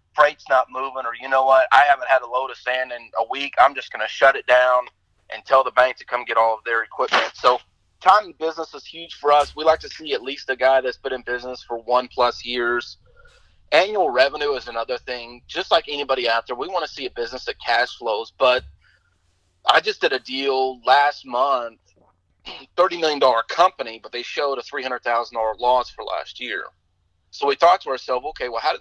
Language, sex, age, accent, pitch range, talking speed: English, male, 30-49, American, 115-135 Hz, 220 wpm